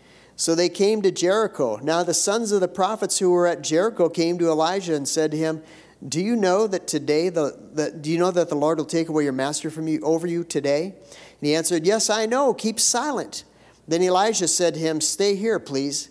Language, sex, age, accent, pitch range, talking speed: English, male, 50-69, American, 155-195 Hz, 225 wpm